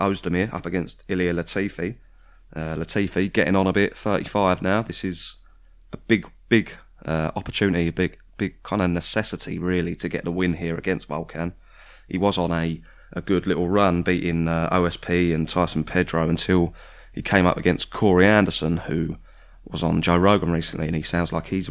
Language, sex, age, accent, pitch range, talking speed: English, male, 20-39, British, 85-100 Hz, 180 wpm